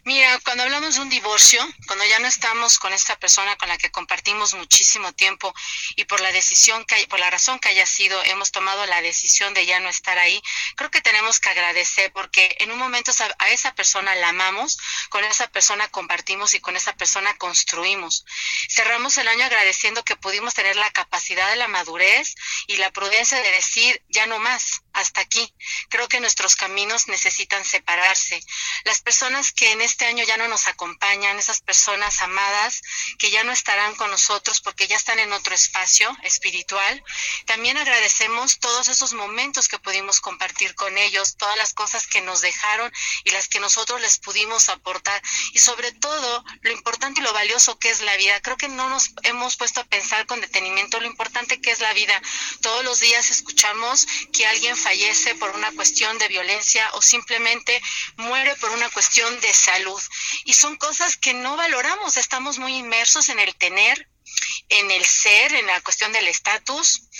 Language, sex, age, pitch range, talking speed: Spanish, female, 30-49, 195-240 Hz, 185 wpm